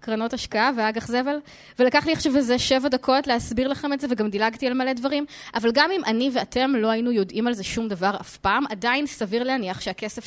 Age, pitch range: 20-39, 210-275 Hz